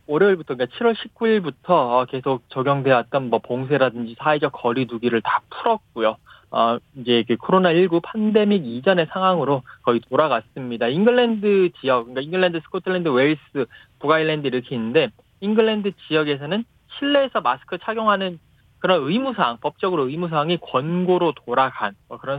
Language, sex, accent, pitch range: Korean, male, native, 130-220 Hz